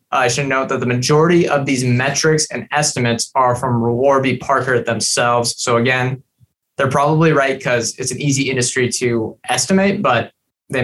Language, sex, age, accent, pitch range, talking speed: English, male, 20-39, American, 120-140 Hz, 170 wpm